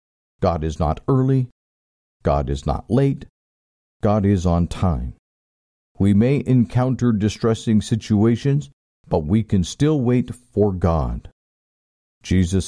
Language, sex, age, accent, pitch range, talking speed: English, male, 50-69, American, 80-120 Hz, 120 wpm